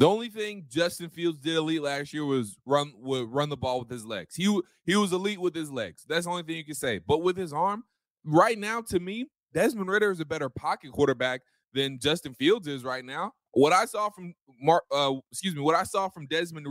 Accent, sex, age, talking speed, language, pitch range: American, male, 20-39, 235 wpm, English, 145-200 Hz